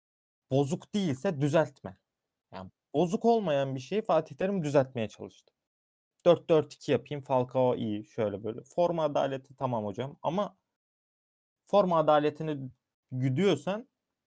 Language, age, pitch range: Turkish, 30-49, 125-170 Hz